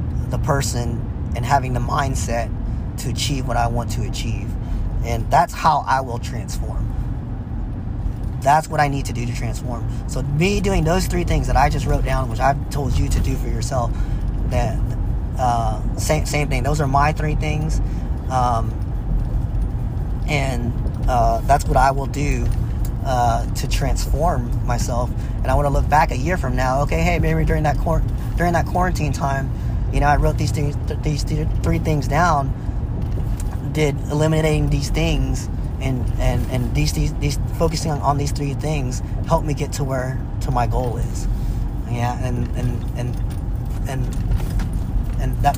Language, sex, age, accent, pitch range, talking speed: English, male, 30-49, American, 110-130 Hz, 175 wpm